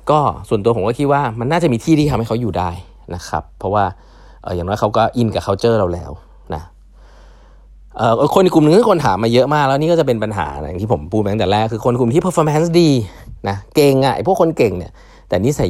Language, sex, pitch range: Thai, male, 90-125 Hz